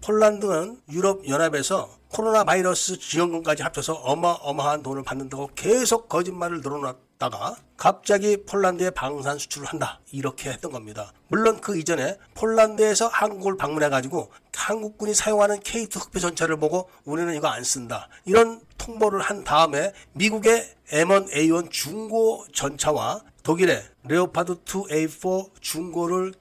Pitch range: 155-200 Hz